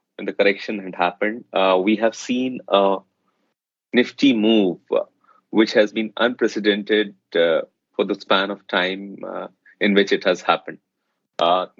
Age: 30-49